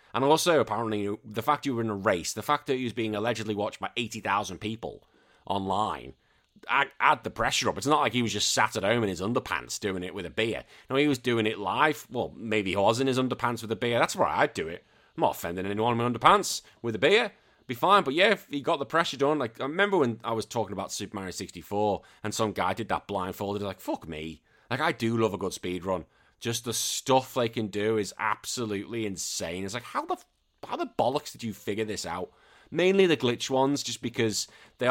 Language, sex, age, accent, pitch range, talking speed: English, male, 30-49, British, 100-120 Hz, 240 wpm